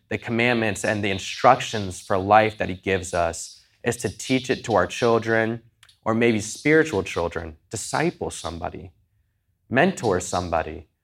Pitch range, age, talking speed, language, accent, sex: 95-115 Hz, 20-39, 140 wpm, English, American, male